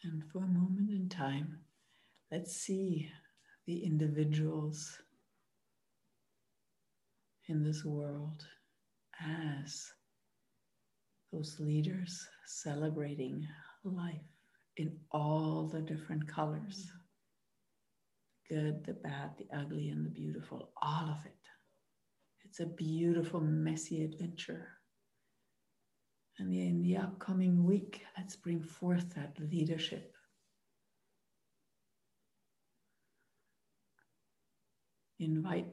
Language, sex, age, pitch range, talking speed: English, female, 60-79, 155-170 Hz, 85 wpm